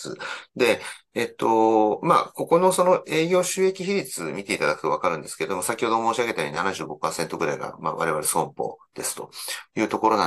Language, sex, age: Japanese, male, 30-49